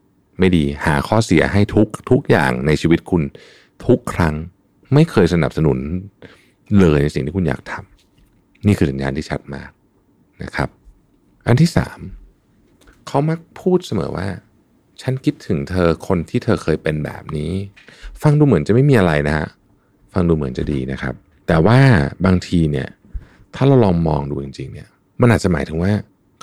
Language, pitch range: Thai, 75-110 Hz